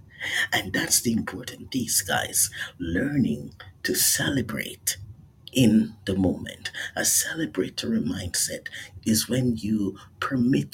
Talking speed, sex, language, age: 105 wpm, male, English, 50-69